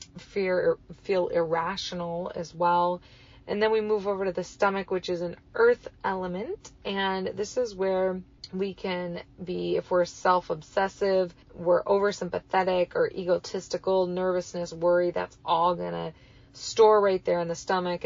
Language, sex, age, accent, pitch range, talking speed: English, female, 20-39, American, 170-195 Hz, 150 wpm